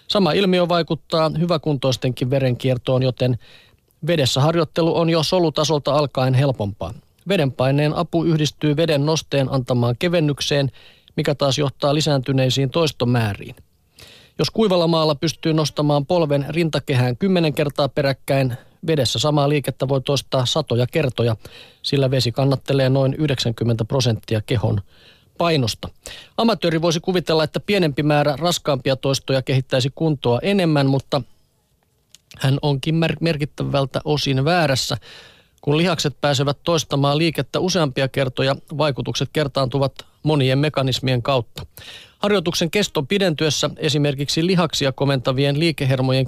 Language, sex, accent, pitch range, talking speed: Finnish, male, native, 130-155 Hz, 110 wpm